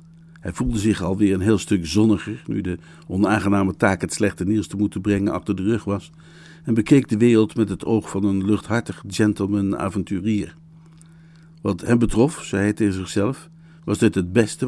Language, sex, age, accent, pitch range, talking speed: Dutch, male, 60-79, Dutch, 100-135 Hz, 185 wpm